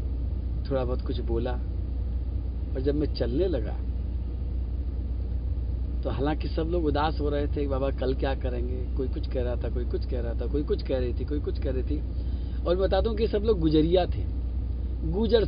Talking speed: 200 wpm